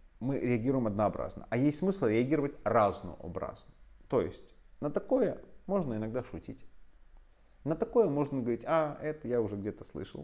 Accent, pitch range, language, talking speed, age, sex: native, 110-150 Hz, Russian, 145 wpm, 30-49, male